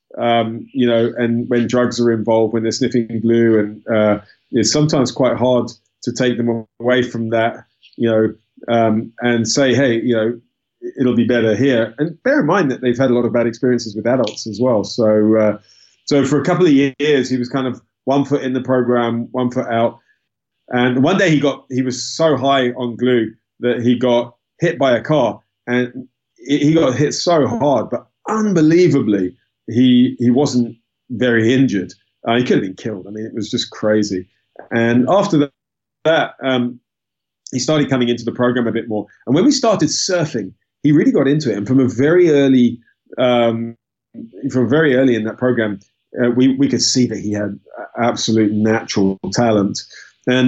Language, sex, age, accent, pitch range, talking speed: English, male, 30-49, British, 115-130 Hz, 190 wpm